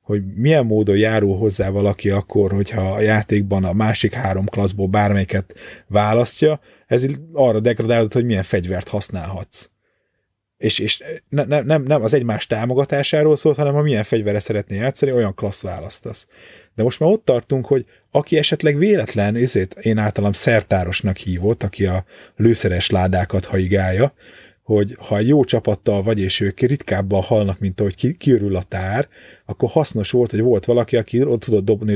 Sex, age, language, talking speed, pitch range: male, 30-49, Hungarian, 165 wpm, 100-130 Hz